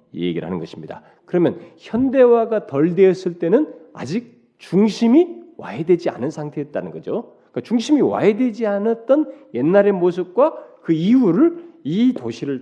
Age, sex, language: 40-59, male, Korean